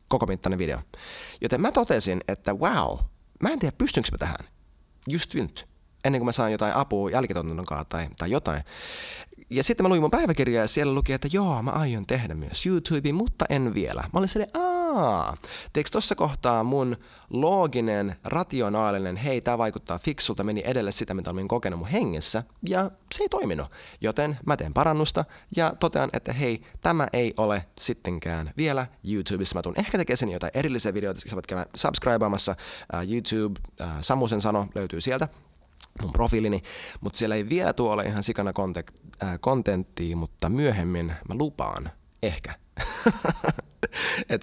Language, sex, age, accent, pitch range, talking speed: Finnish, male, 20-39, native, 90-135 Hz, 155 wpm